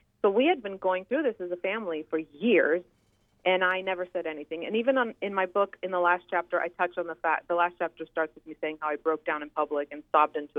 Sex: female